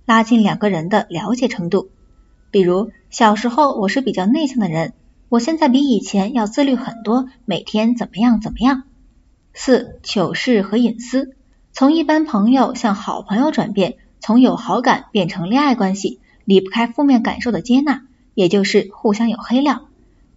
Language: Chinese